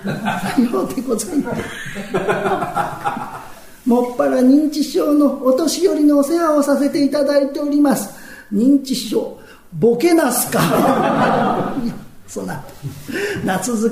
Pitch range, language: 230-280 Hz, Japanese